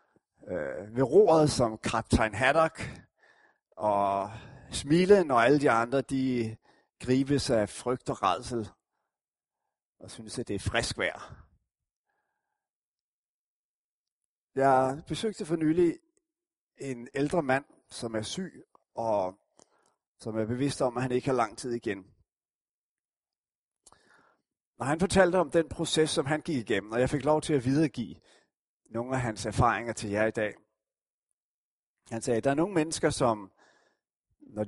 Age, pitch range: 30-49, 115-155 Hz